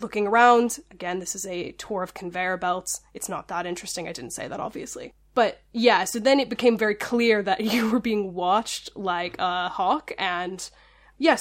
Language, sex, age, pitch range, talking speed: English, female, 10-29, 195-245 Hz, 195 wpm